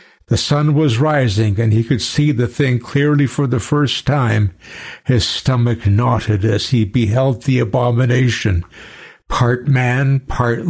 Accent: American